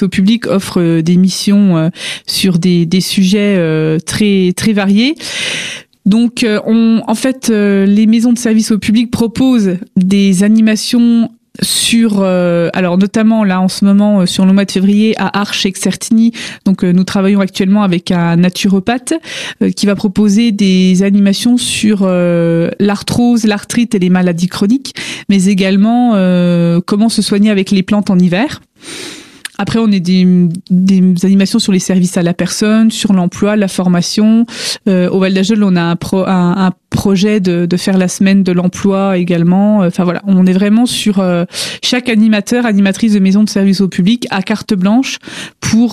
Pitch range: 185-220 Hz